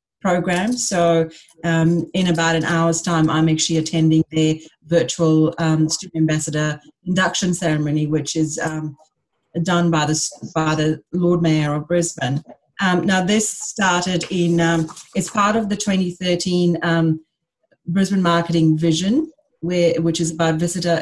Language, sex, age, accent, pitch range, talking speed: English, female, 30-49, Australian, 165-180 Hz, 145 wpm